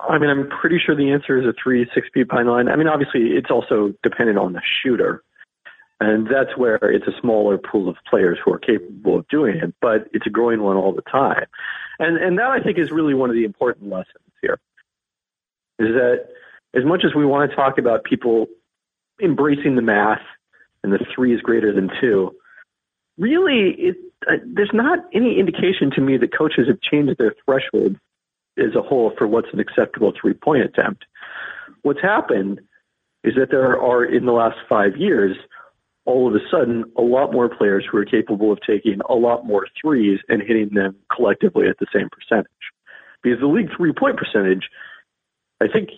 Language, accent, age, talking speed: English, American, 40-59, 195 wpm